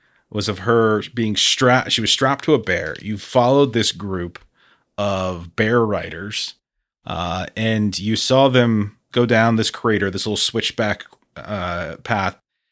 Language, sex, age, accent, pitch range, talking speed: English, male, 30-49, American, 105-135 Hz, 150 wpm